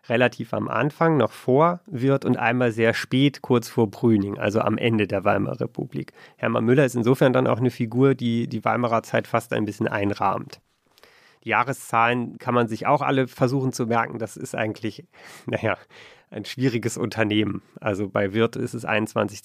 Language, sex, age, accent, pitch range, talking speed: German, male, 40-59, German, 110-135 Hz, 180 wpm